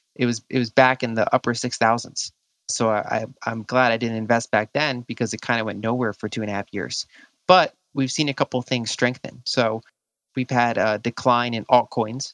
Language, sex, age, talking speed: English, male, 30-49, 215 wpm